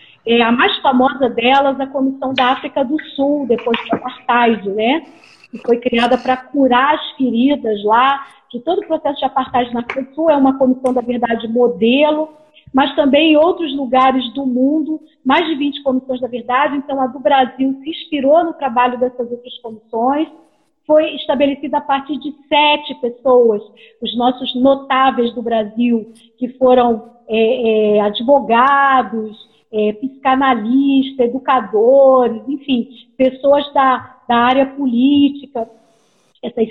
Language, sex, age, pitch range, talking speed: Portuguese, female, 40-59, 240-285 Hz, 140 wpm